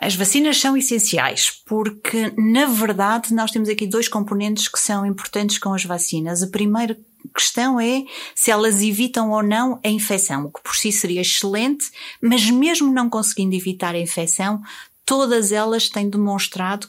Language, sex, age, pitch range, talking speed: Portuguese, female, 30-49, 190-230 Hz, 165 wpm